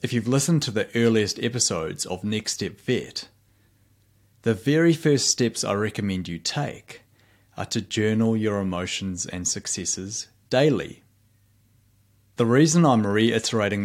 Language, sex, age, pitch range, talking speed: English, male, 30-49, 95-115 Hz, 135 wpm